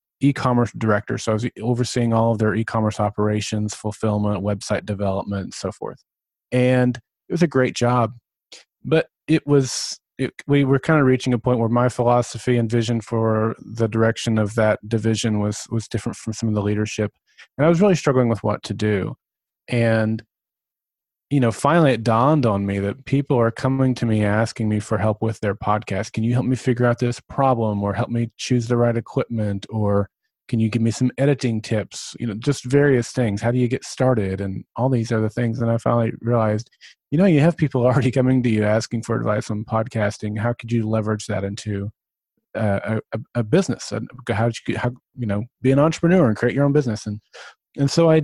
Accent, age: American, 30-49